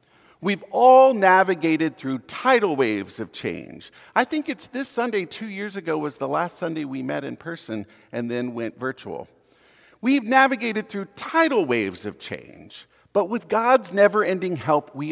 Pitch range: 140-225 Hz